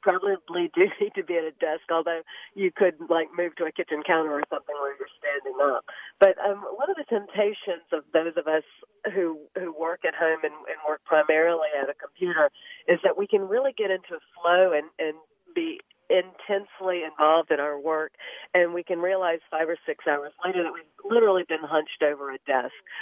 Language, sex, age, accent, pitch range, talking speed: English, female, 40-59, American, 155-195 Hz, 205 wpm